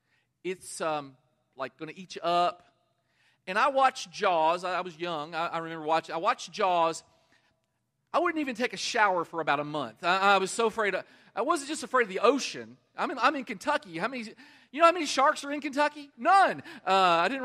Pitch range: 165-260 Hz